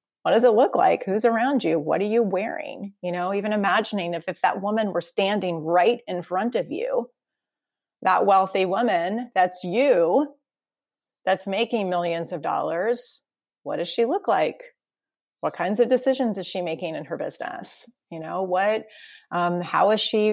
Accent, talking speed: American, 175 wpm